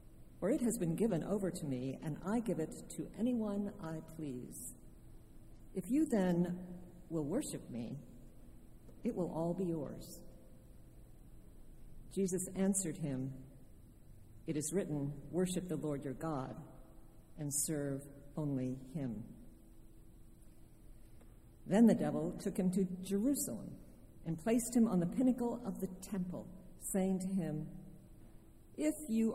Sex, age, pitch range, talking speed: female, 50-69, 135-190 Hz, 130 wpm